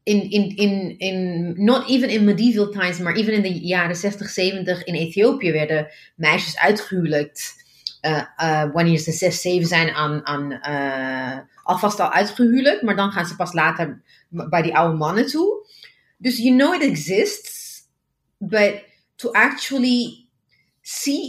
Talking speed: 145 wpm